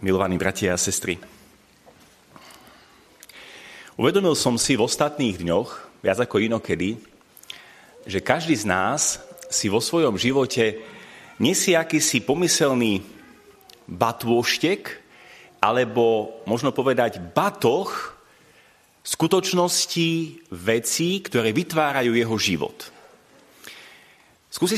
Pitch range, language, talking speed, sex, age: 120-165 Hz, Slovak, 85 wpm, male, 40-59